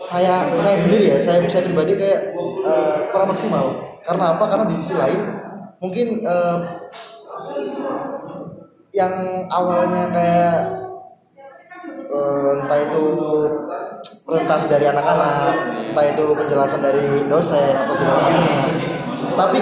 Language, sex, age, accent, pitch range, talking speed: Indonesian, male, 20-39, native, 150-205 Hz, 115 wpm